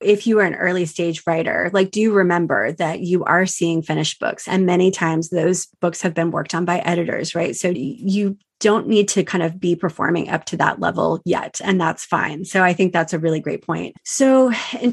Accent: American